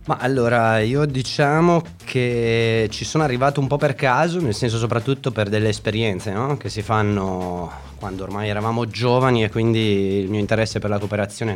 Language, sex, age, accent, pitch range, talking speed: Italian, male, 20-39, native, 100-115 Hz, 175 wpm